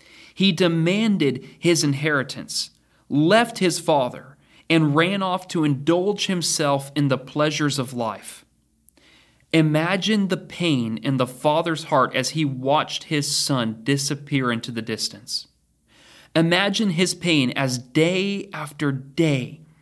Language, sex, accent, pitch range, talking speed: English, male, American, 135-175 Hz, 125 wpm